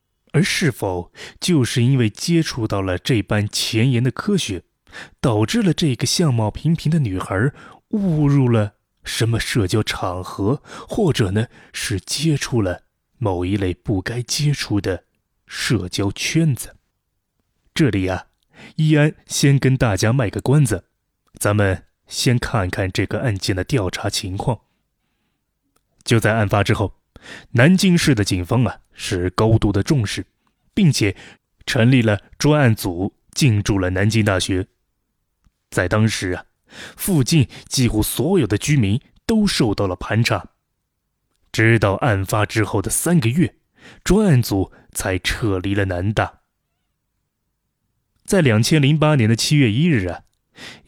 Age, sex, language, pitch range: 20-39, male, Chinese, 100-140 Hz